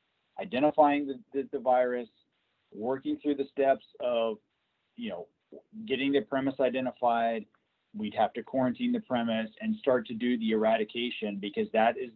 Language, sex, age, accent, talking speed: English, male, 30-49, American, 155 wpm